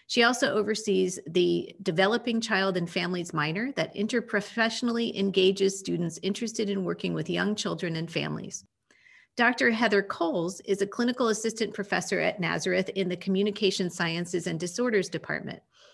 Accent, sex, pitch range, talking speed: American, female, 180-220 Hz, 145 wpm